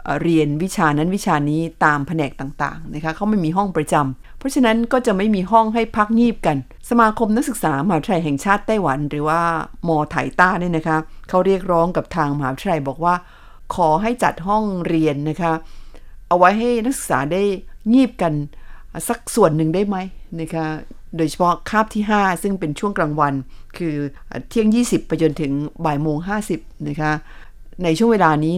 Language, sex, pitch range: Thai, female, 155-205 Hz